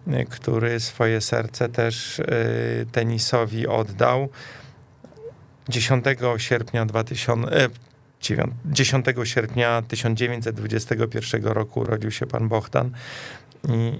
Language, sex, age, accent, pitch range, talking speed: Polish, male, 40-59, native, 115-130 Hz, 75 wpm